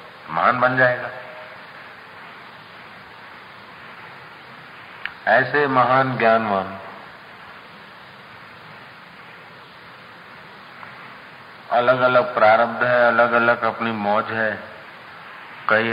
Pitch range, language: 95-110 Hz, Hindi